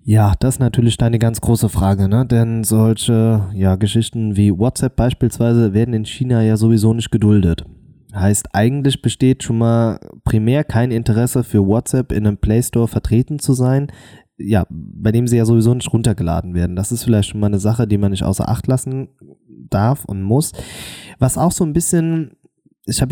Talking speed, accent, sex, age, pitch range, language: 185 wpm, German, male, 20-39, 100-130 Hz, German